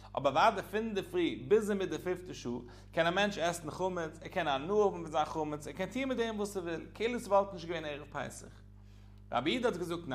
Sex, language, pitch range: male, English, 135-195 Hz